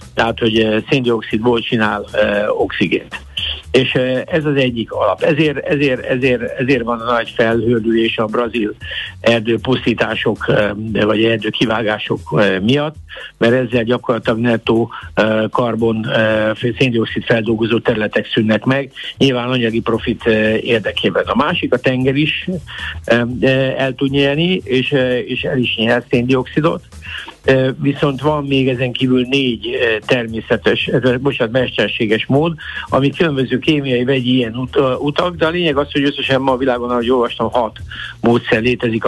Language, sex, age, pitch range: Hungarian, male, 60-79, 115-135 Hz